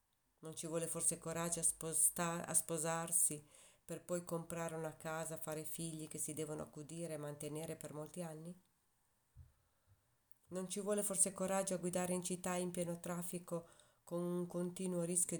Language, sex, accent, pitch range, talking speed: Italian, female, native, 150-175 Hz, 155 wpm